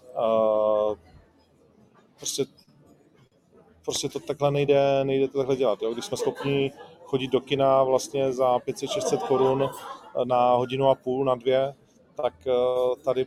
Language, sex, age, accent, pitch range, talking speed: Czech, male, 40-59, native, 125-140 Hz, 135 wpm